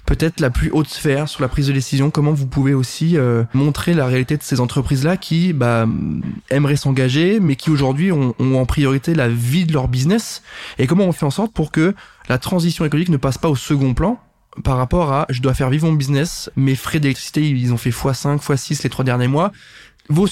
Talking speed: 235 wpm